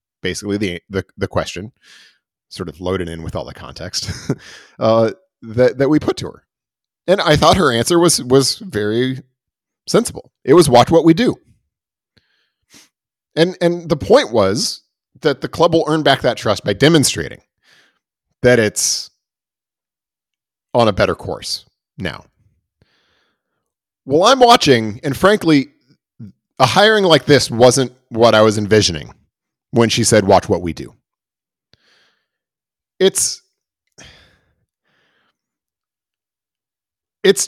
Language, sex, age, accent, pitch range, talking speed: English, male, 40-59, American, 105-145 Hz, 130 wpm